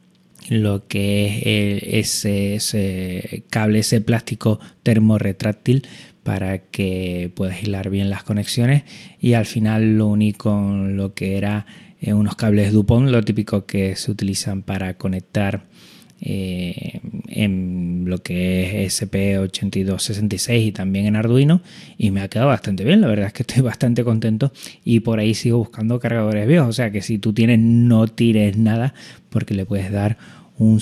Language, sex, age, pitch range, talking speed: Spanish, male, 20-39, 100-115 Hz, 155 wpm